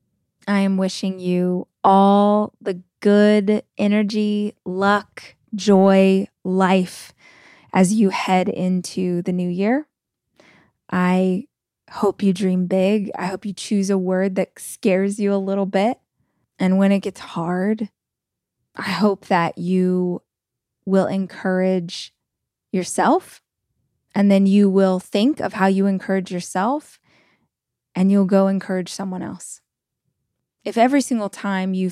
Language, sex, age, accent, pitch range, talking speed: English, female, 20-39, American, 185-210 Hz, 130 wpm